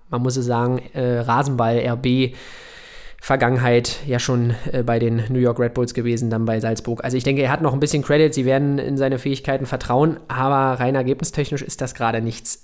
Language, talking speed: German, 205 wpm